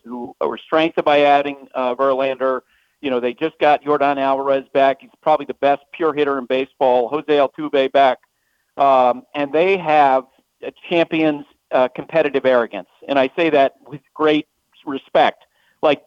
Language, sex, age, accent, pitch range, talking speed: English, male, 50-69, American, 130-155 Hz, 160 wpm